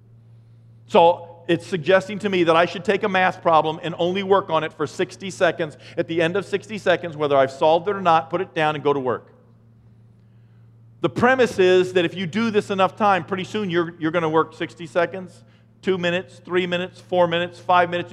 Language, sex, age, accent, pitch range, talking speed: English, male, 40-59, American, 150-195 Hz, 220 wpm